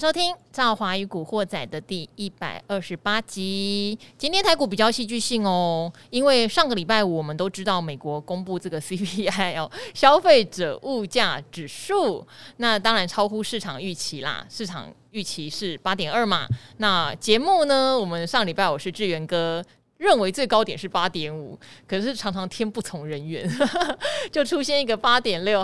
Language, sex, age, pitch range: Chinese, female, 20-39, 170-225 Hz